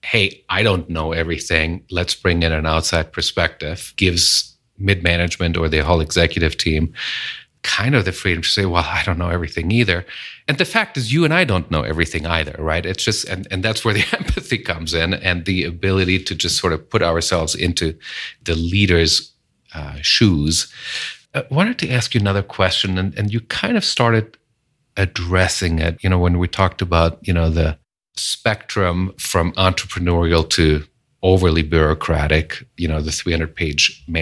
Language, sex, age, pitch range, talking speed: English, male, 40-59, 80-95 Hz, 175 wpm